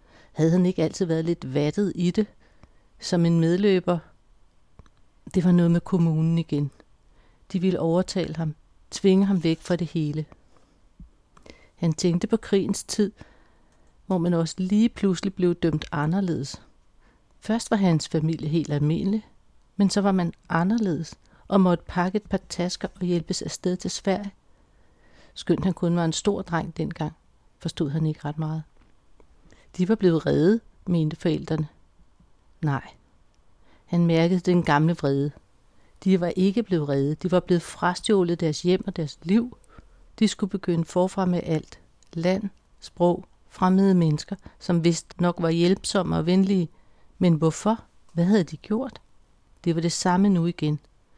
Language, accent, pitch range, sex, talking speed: Danish, native, 160-190 Hz, female, 155 wpm